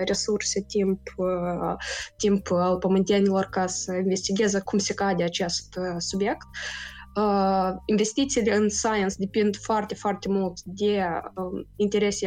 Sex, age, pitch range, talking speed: female, 20-39, 185-215 Hz, 110 wpm